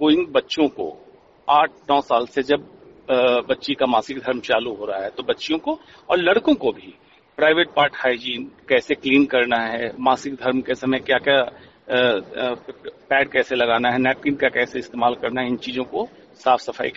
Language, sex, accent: Hindi, male, native